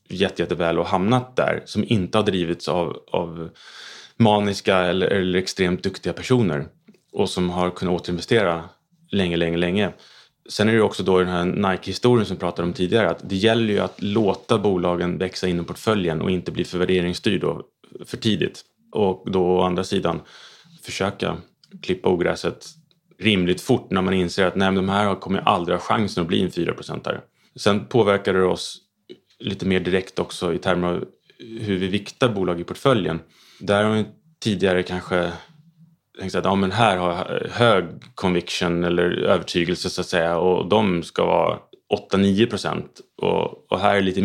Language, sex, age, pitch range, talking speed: Swedish, male, 30-49, 90-105 Hz, 170 wpm